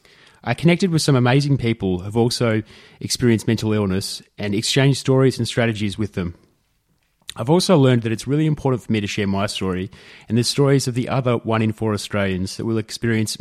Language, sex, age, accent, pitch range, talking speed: English, male, 30-49, Australian, 105-135 Hz, 200 wpm